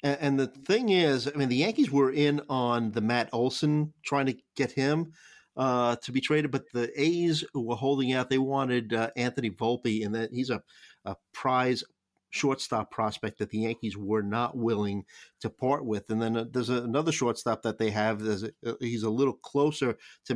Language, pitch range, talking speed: English, 110-140 Hz, 200 wpm